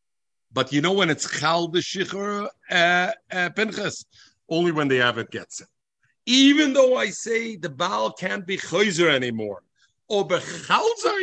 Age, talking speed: 50-69, 130 wpm